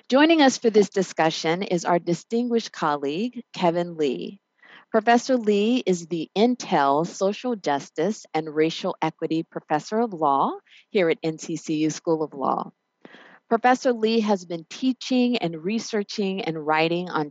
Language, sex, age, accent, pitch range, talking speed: English, female, 50-69, American, 150-205 Hz, 140 wpm